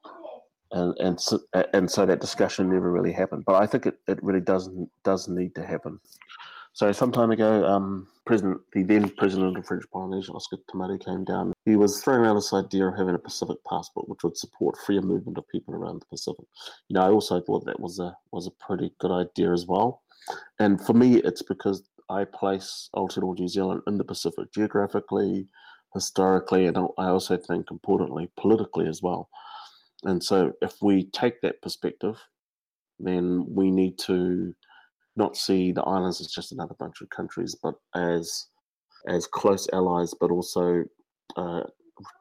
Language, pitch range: English, 90-100 Hz